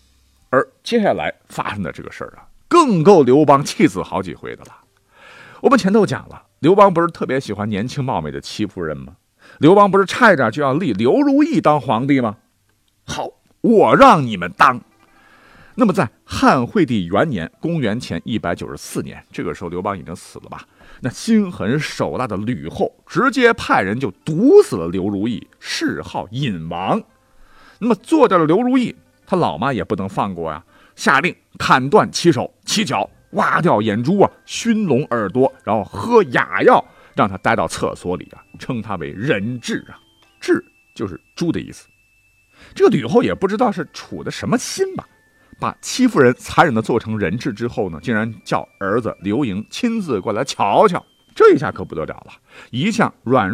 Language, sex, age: Chinese, male, 50-69